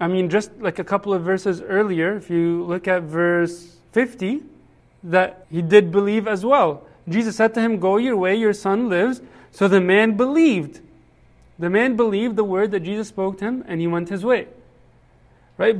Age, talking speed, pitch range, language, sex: 30-49, 195 wpm, 180-225 Hz, English, male